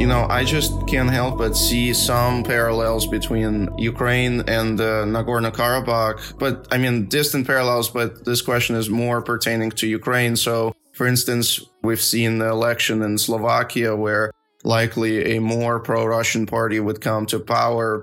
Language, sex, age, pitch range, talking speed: English, male, 20-39, 110-125 Hz, 155 wpm